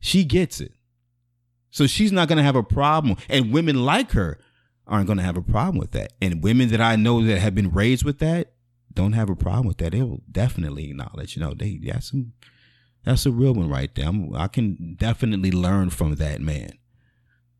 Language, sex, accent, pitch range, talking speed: English, male, American, 100-130 Hz, 215 wpm